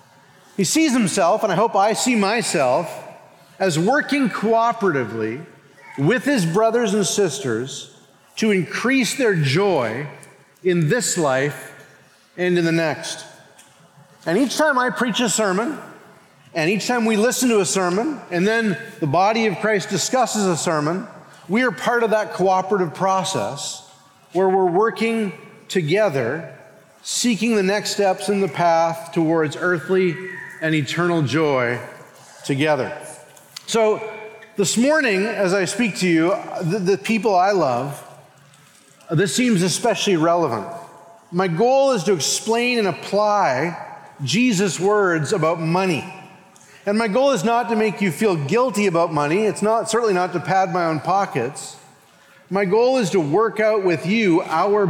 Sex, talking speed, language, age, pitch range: male, 145 wpm, English, 40-59, 165-220 Hz